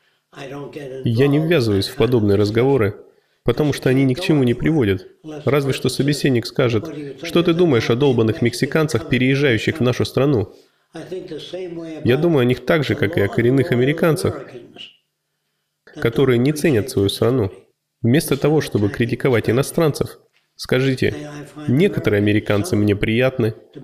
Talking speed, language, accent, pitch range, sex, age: 135 wpm, Russian, native, 115-150 Hz, male, 20-39